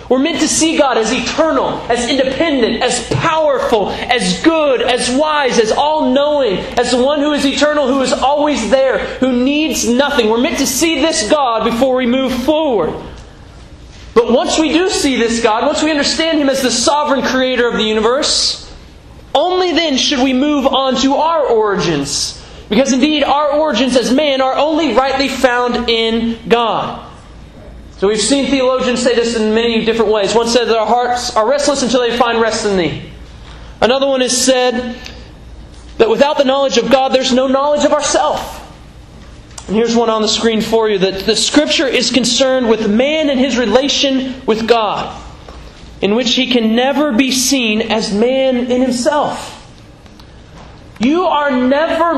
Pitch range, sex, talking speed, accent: 235-285 Hz, male, 175 wpm, American